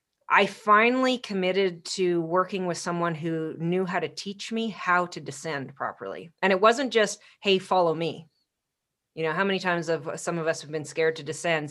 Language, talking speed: English, 195 wpm